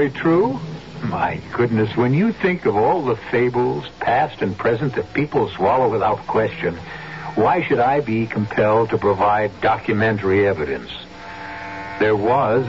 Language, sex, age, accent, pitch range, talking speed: English, male, 60-79, American, 105-150 Hz, 135 wpm